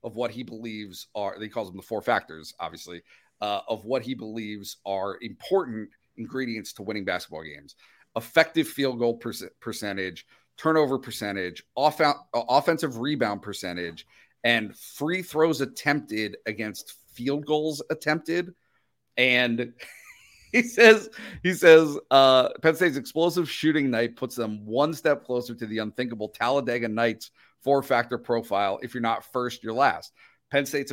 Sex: male